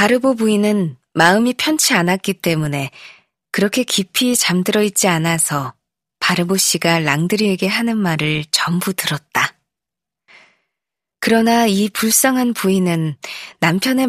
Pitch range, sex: 170-230 Hz, female